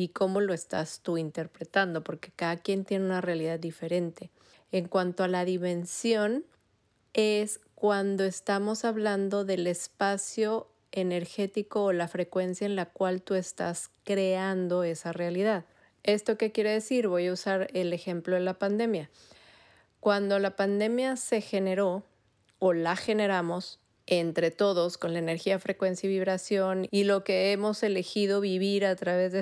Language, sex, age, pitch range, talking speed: Spanish, female, 30-49, 180-215 Hz, 150 wpm